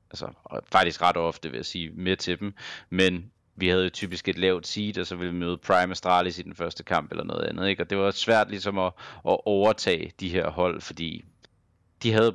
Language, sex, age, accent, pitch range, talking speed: Danish, male, 30-49, native, 90-100 Hz, 225 wpm